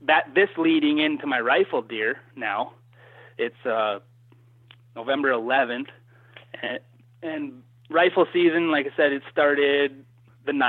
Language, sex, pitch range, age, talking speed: English, male, 120-140 Hz, 20-39, 125 wpm